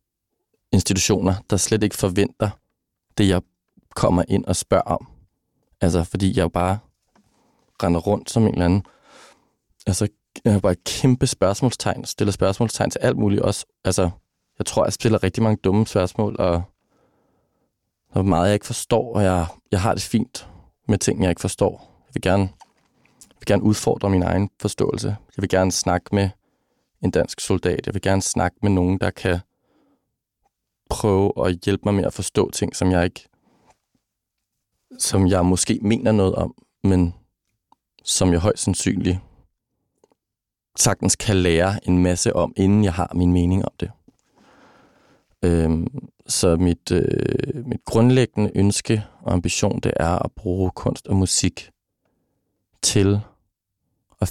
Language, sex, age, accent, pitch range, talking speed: Danish, male, 20-39, native, 90-105 Hz, 155 wpm